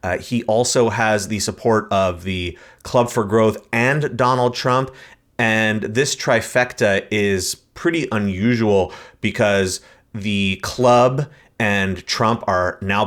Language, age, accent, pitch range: English, 30-49, American, 100-120 Hz